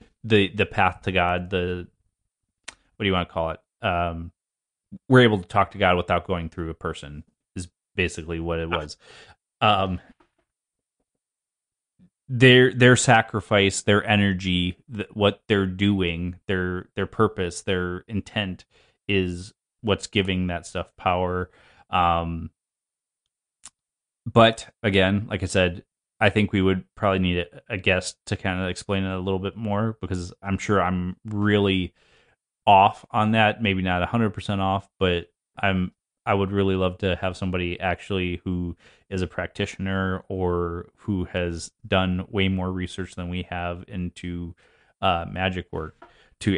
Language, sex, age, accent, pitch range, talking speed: English, male, 30-49, American, 90-100 Hz, 150 wpm